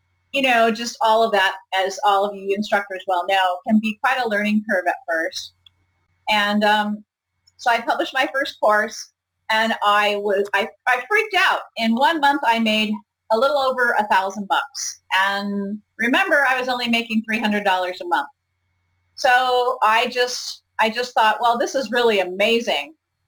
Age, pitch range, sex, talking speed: 30-49, 200-245 Hz, female, 175 wpm